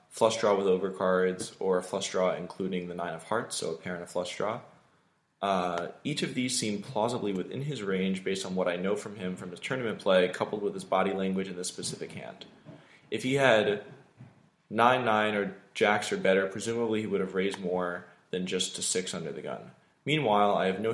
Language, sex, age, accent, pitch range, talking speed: English, male, 20-39, American, 95-110 Hz, 220 wpm